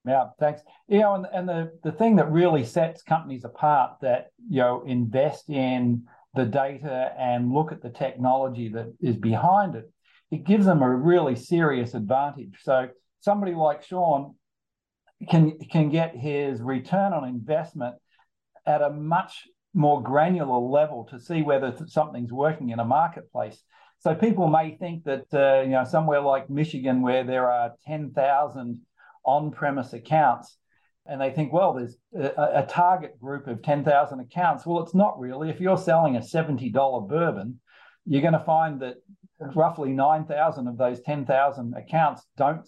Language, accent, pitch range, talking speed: English, Australian, 125-160 Hz, 160 wpm